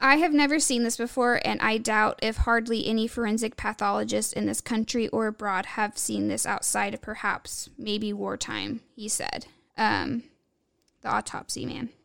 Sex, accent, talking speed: female, American, 165 wpm